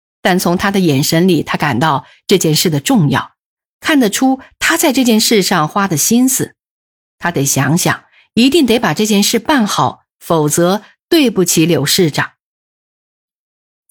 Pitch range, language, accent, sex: 165-235 Hz, Chinese, native, female